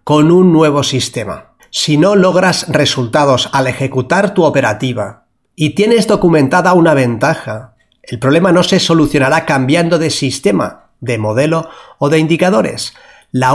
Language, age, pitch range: Spanish, 30-49, 135-180 Hz